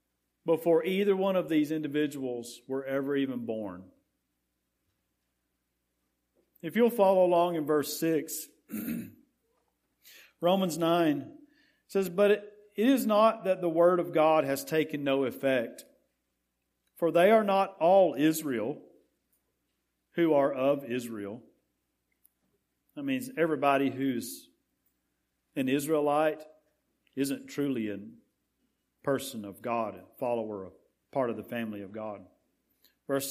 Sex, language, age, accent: male, English, 40-59, American